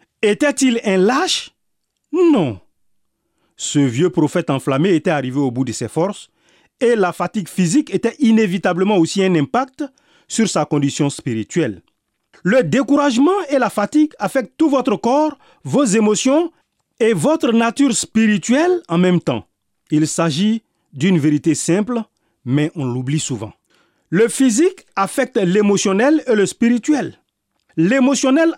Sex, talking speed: male, 130 wpm